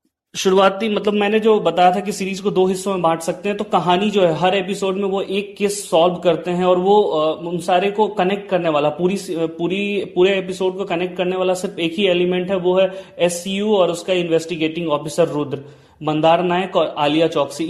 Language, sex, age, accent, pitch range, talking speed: Hindi, male, 30-49, native, 160-195 Hz, 210 wpm